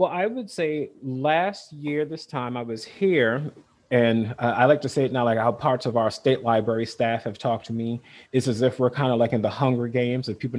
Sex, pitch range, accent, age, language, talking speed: male, 120-155 Hz, American, 30-49, English, 250 wpm